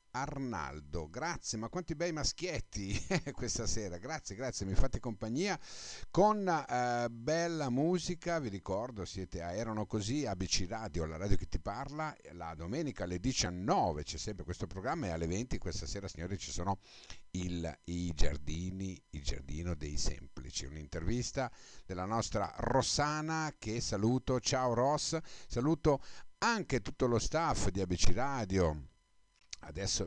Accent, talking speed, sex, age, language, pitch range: native, 140 wpm, male, 50-69, Italian, 90-130 Hz